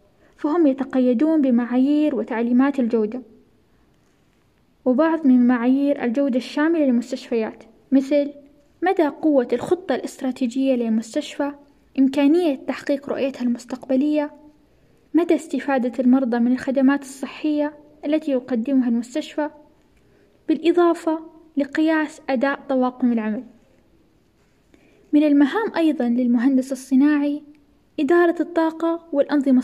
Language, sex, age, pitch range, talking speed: Arabic, female, 10-29, 255-300 Hz, 85 wpm